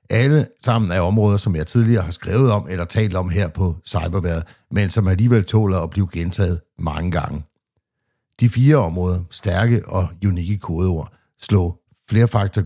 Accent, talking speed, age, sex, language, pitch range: native, 160 wpm, 60-79, male, Danish, 90-110 Hz